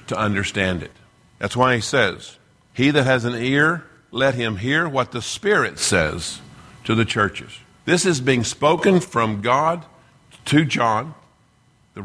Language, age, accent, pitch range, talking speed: English, 50-69, American, 115-155 Hz, 155 wpm